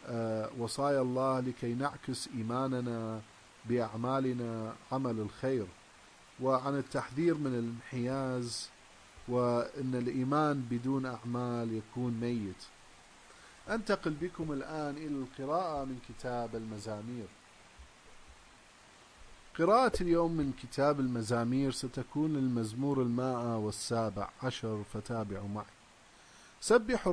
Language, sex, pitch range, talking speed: English, male, 115-145 Hz, 85 wpm